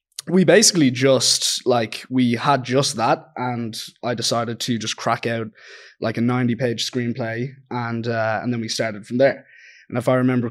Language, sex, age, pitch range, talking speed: English, male, 20-39, 115-130 Hz, 185 wpm